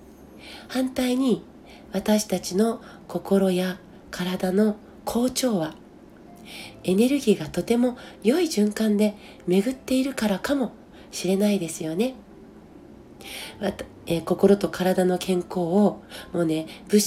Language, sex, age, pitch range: Japanese, female, 40-59, 175-230 Hz